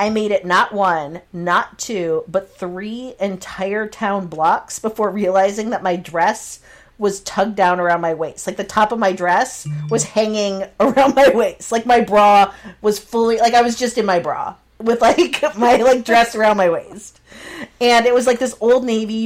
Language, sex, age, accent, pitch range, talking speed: English, female, 40-59, American, 190-255 Hz, 190 wpm